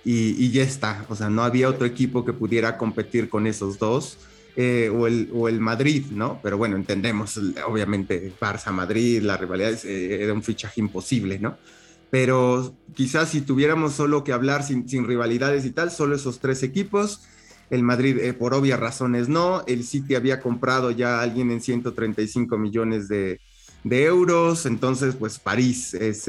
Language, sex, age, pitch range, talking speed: Spanish, male, 30-49, 115-140 Hz, 175 wpm